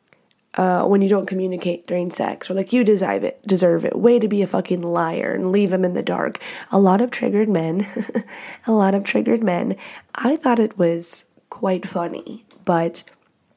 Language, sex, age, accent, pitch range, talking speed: English, female, 20-39, American, 175-210 Hz, 190 wpm